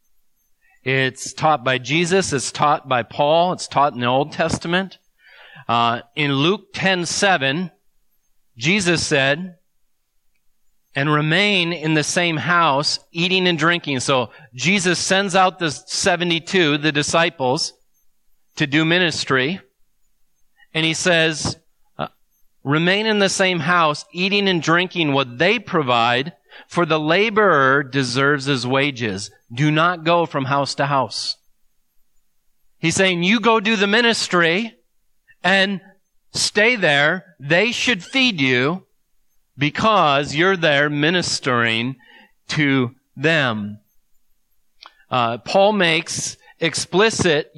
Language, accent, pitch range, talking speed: English, American, 135-180 Hz, 115 wpm